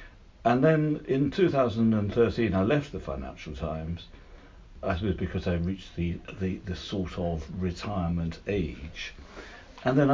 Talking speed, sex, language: 135 wpm, male, English